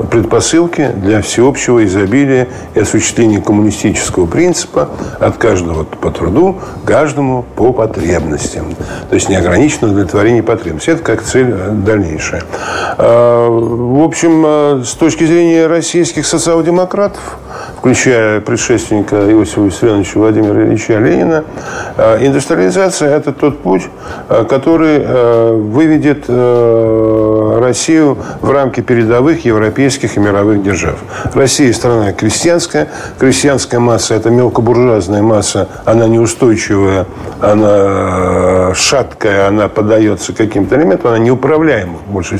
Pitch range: 110-145 Hz